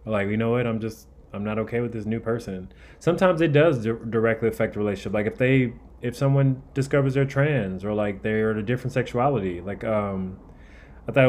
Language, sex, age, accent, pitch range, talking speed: English, male, 20-39, American, 100-120 Hz, 205 wpm